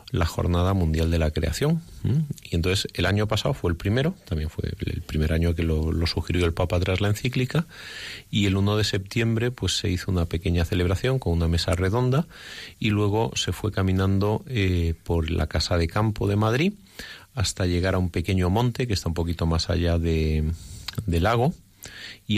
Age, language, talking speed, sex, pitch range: 30-49, Spanish, 195 wpm, male, 85-110 Hz